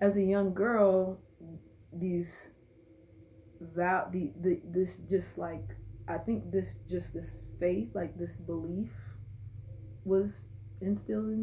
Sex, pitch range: female, 165-190 Hz